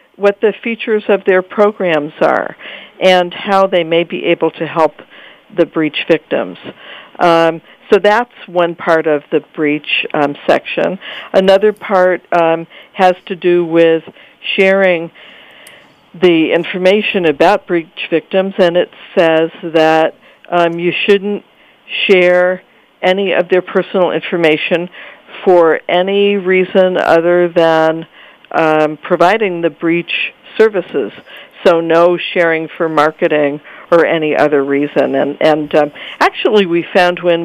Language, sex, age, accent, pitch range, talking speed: English, female, 60-79, American, 160-190 Hz, 130 wpm